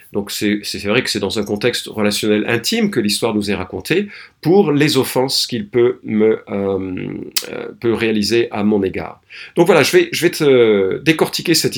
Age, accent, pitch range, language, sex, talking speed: 50-69, French, 105-160 Hz, French, male, 170 wpm